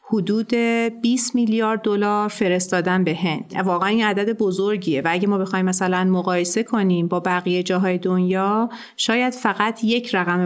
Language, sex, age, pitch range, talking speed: Persian, female, 30-49, 185-210 Hz, 150 wpm